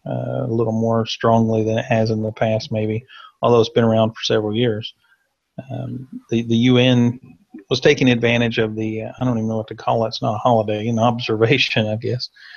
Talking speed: 215 wpm